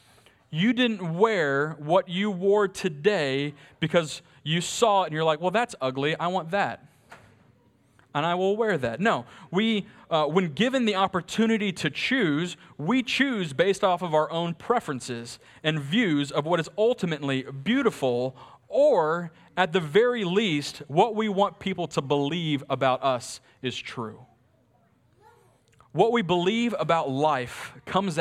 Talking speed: 150 wpm